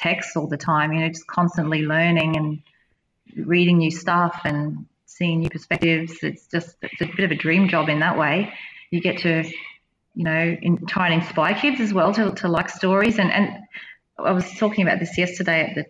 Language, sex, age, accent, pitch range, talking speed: English, female, 30-49, Australian, 165-195 Hz, 205 wpm